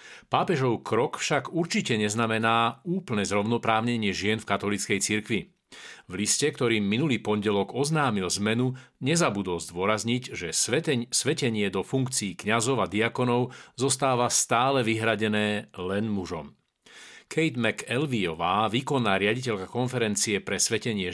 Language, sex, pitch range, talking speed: Slovak, male, 105-135 Hz, 110 wpm